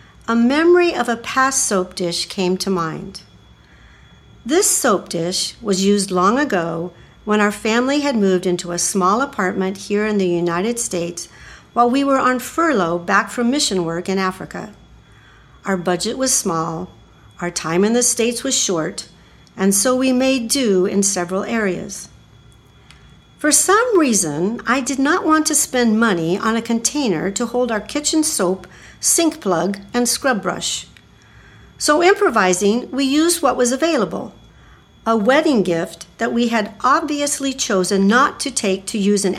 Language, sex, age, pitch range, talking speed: English, female, 50-69, 185-250 Hz, 160 wpm